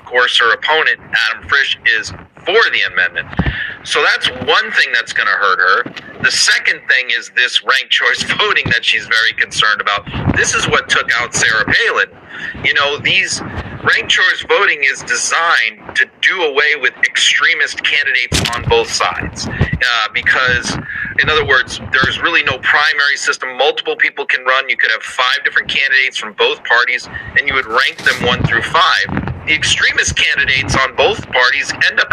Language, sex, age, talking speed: English, male, 40-59, 175 wpm